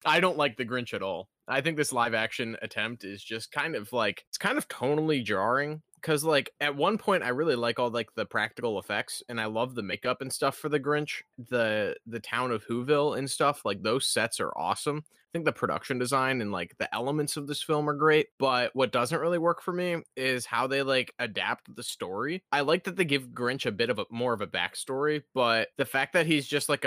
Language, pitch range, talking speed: English, 120-150 Hz, 240 wpm